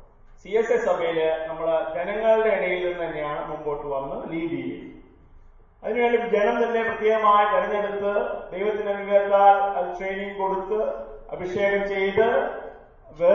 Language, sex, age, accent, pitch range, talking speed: English, male, 30-49, Indian, 165-205 Hz, 55 wpm